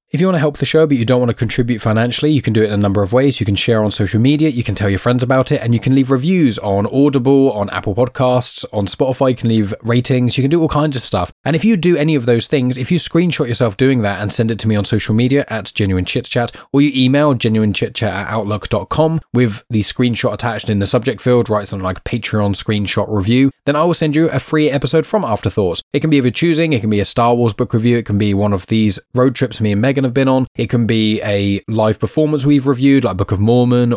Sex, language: male, English